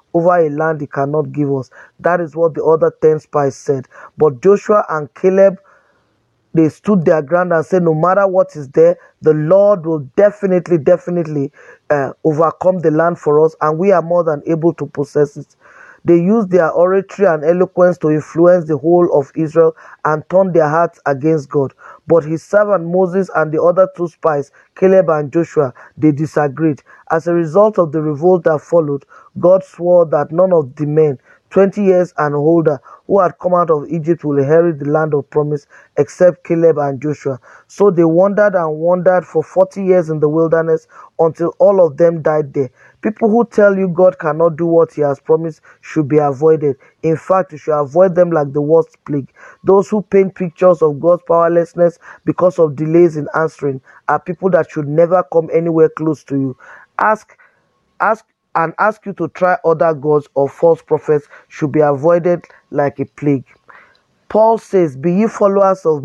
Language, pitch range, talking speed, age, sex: English, 150-180 Hz, 185 wpm, 20-39, male